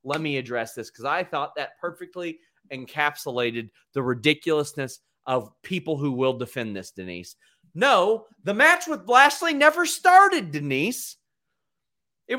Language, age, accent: English, 30-49, American